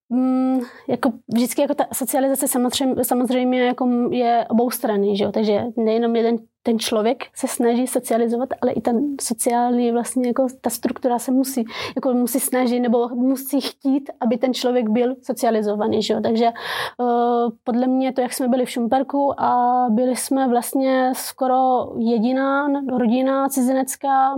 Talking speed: 155 wpm